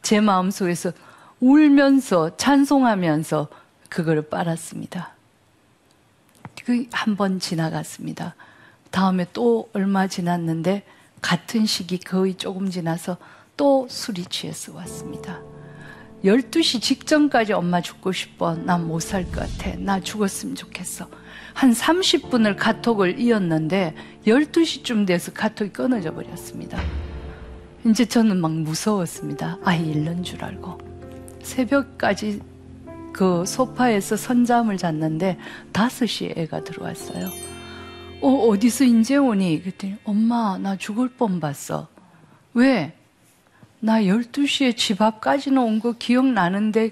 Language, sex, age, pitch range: Korean, female, 40-59, 175-235 Hz